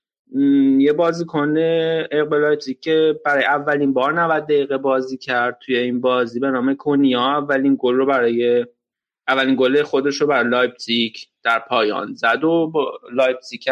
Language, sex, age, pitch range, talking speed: Persian, male, 30-49, 125-160 Hz, 135 wpm